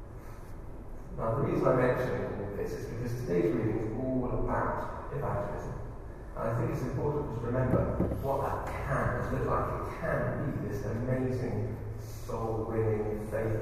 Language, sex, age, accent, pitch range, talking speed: English, male, 30-49, British, 110-125 Hz, 140 wpm